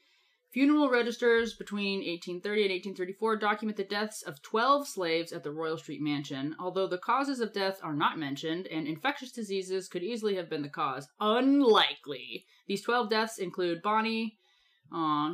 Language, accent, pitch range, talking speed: English, American, 170-230 Hz, 160 wpm